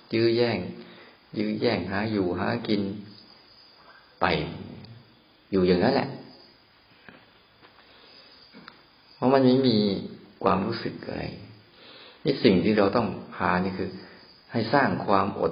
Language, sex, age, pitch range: Thai, male, 50-69, 90-105 Hz